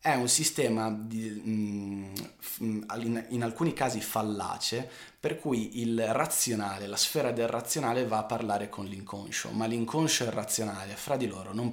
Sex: male